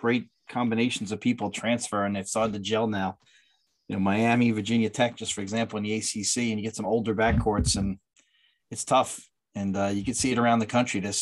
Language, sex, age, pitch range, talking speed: English, male, 30-49, 105-120 Hz, 220 wpm